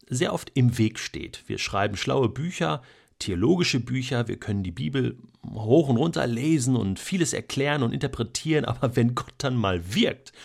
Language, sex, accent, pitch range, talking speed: German, male, German, 115-145 Hz, 170 wpm